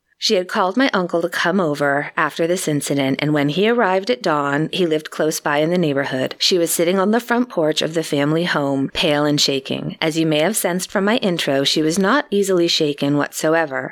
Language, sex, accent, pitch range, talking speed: English, female, American, 150-195 Hz, 225 wpm